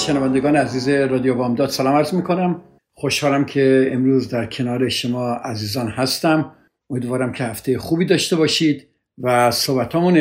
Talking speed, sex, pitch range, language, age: 140 wpm, male, 125-145 Hz, Persian, 50-69